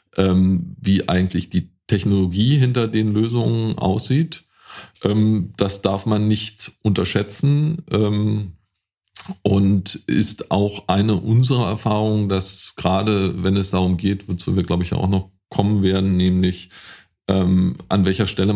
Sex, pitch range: male, 95-110 Hz